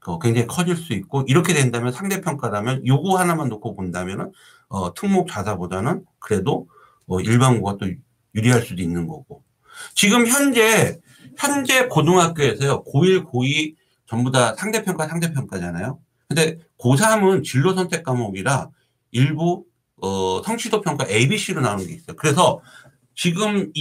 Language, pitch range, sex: Korean, 115-175 Hz, male